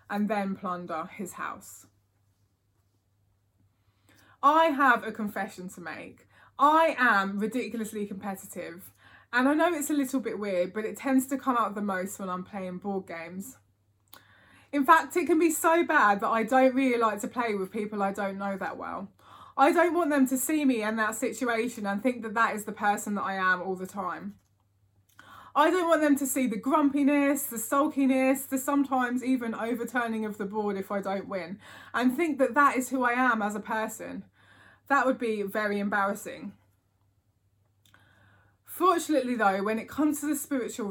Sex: female